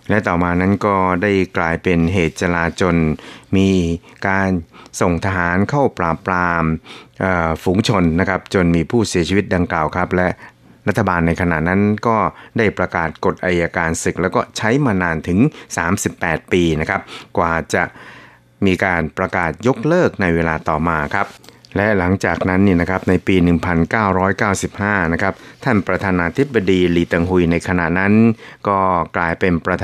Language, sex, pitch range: Thai, male, 85-95 Hz